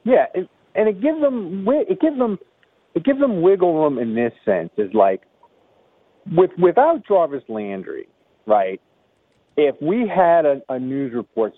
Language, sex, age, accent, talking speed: English, male, 50-69, American, 160 wpm